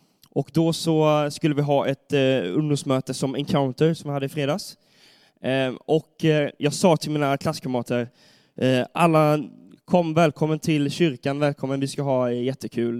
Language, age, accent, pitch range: Swedish, 20-39, native, 135-170 Hz